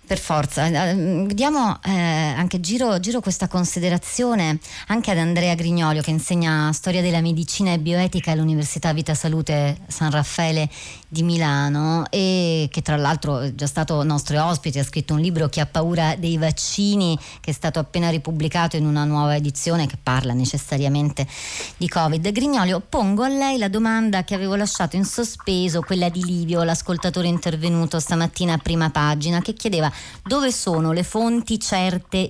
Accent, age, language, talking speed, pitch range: native, 30-49, Italian, 160 wpm, 145-180 Hz